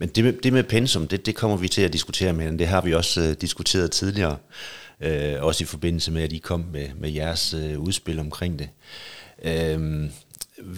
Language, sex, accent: Danish, male, native